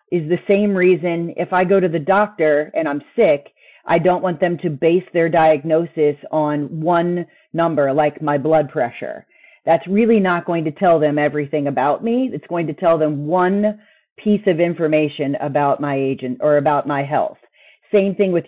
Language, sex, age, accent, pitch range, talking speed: English, female, 40-59, American, 150-180 Hz, 185 wpm